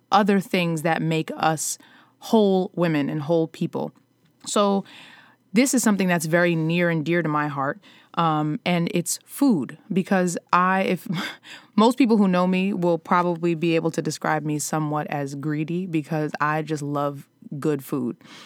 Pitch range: 155-190 Hz